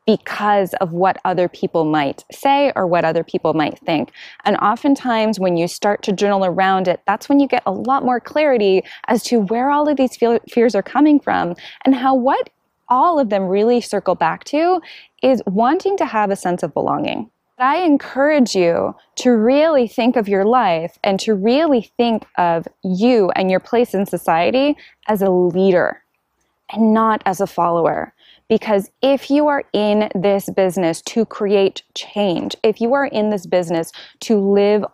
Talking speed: 180 wpm